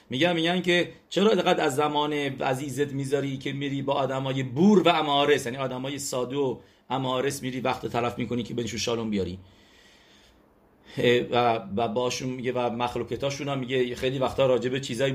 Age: 50-69